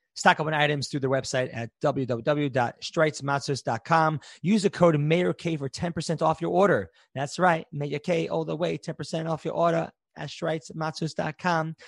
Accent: American